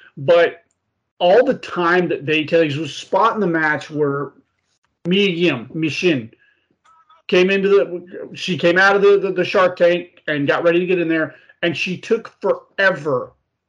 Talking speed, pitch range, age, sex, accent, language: 160 wpm, 155-195 Hz, 40-59, male, American, English